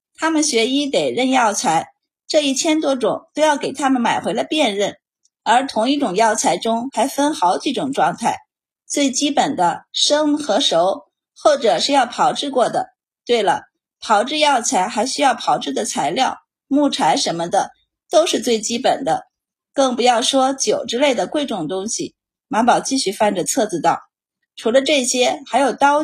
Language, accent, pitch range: Chinese, native, 225-295 Hz